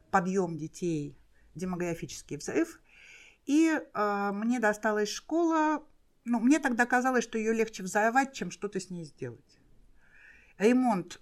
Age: 50-69